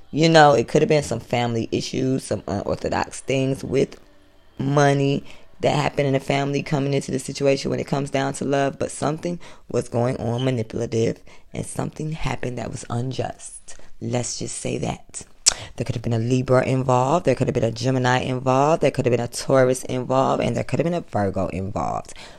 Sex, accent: female, American